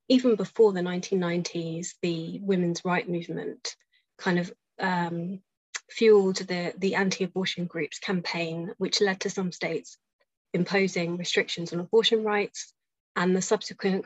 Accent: British